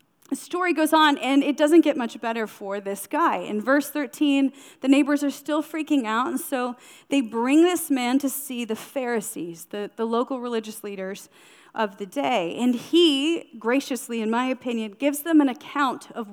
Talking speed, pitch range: 185 wpm, 200-280 Hz